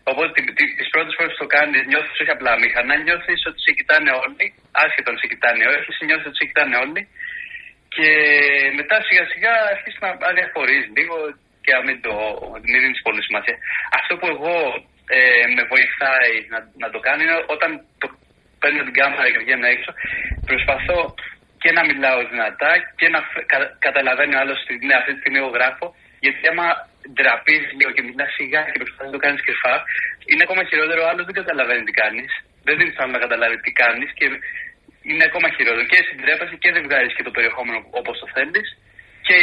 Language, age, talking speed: Greek, 30-49, 185 wpm